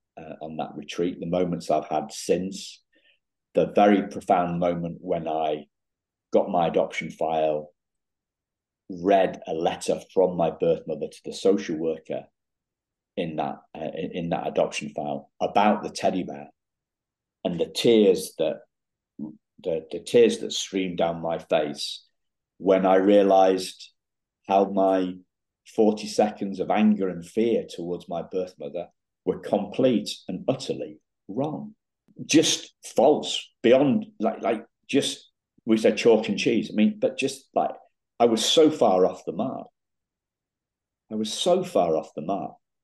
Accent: British